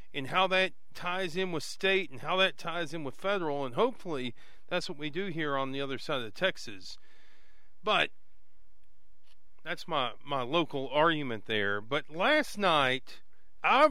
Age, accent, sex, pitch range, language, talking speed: 40-59, American, male, 140-190 Hz, English, 165 wpm